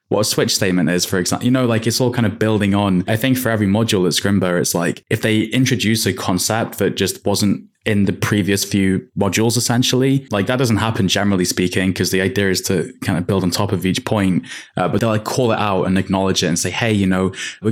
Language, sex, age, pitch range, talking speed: English, male, 20-39, 95-120 Hz, 250 wpm